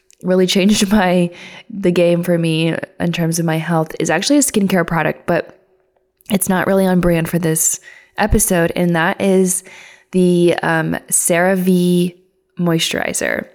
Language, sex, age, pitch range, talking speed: English, female, 20-39, 170-195 Hz, 150 wpm